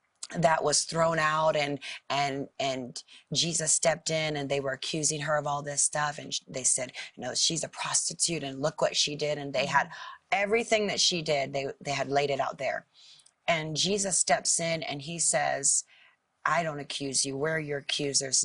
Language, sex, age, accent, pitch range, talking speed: English, female, 30-49, American, 145-175 Hz, 200 wpm